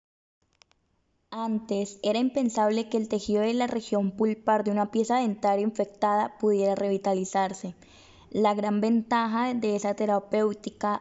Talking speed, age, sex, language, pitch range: 125 wpm, 10-29, female, Spanish, 205-230 Hz